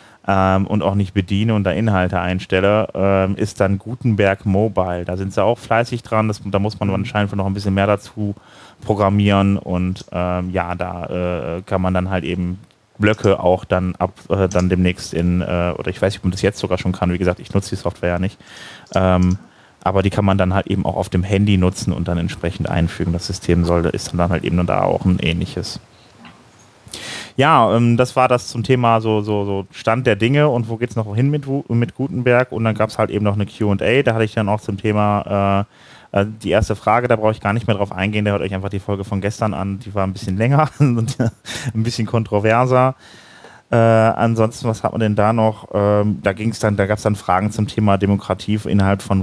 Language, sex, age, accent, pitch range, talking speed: German, male, 30-49, German, 95-110 Hz, 225 wpm